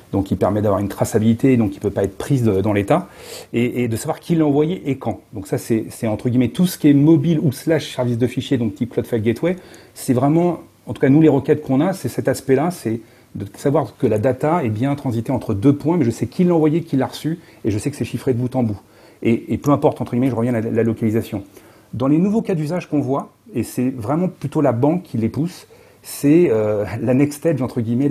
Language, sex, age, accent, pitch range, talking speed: French, male, 40-59, French, 115-155 Hz, 265 wpm